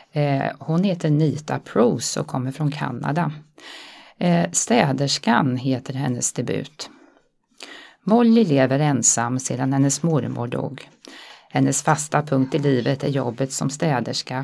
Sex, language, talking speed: female, Swedish, 115 wpm